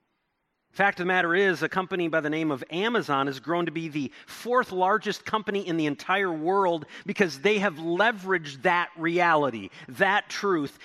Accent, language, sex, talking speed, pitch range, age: American, English, male, 185 wpm, 160-205 Hz, 40-59